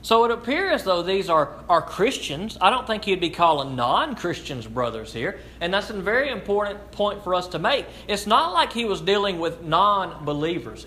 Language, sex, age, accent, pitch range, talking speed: English, male, 40-59, American, 150-210 Hz, 195 wpm